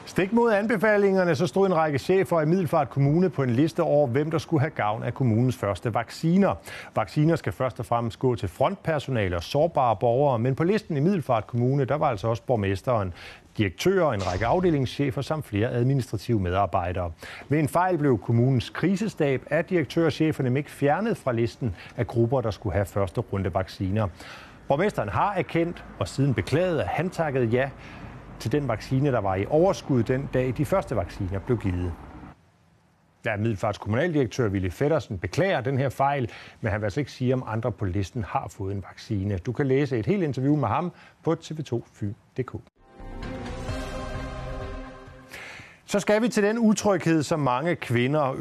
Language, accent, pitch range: Danish, native, 110-160 Hz